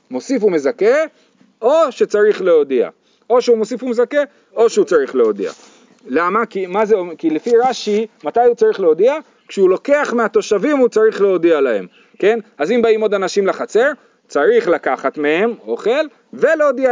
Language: Hebrew